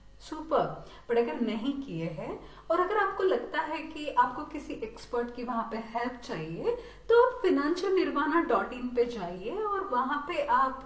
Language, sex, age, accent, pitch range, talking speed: Hindi, female, 30-49, native, 205-285 Hz, 175 wpm